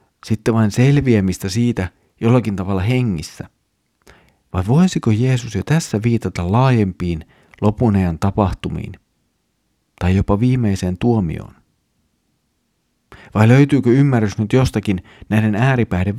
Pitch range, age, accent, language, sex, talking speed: 95-120 Hz, 40-59, native, Finnish, male, 100 wpm